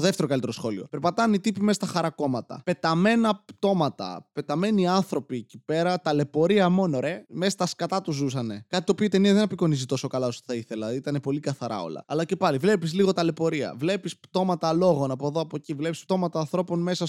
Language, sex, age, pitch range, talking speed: Greek, male, 20-39, 150-200 Hz, 195 wpm